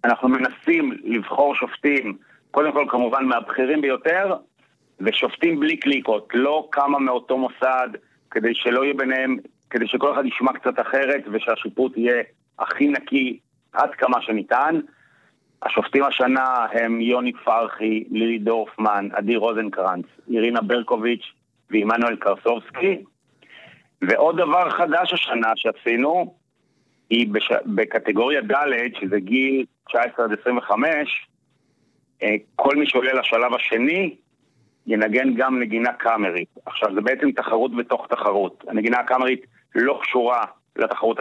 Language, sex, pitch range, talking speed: Hebrew, male, 115-140 Hz, 115 wpm